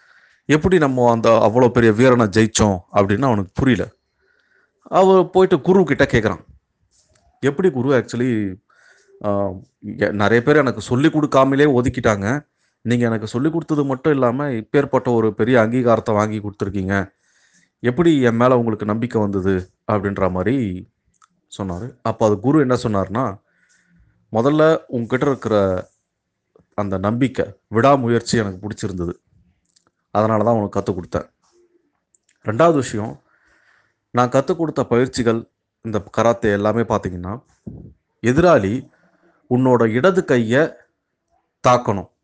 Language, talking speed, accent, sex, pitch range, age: Tamil, 110 wpm, native, male, 105-140 Hz, 30-49